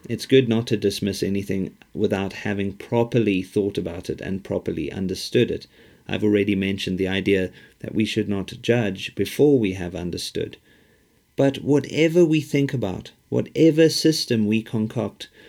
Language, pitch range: English, 100-125 Hz